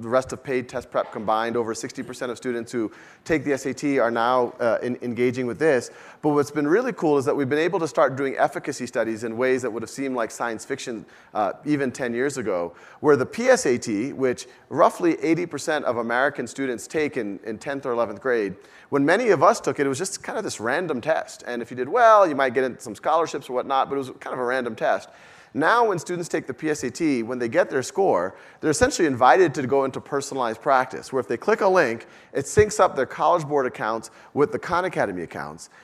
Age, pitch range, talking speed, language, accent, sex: 40-59, 130-175 Hz, 230 wpm, English, American, male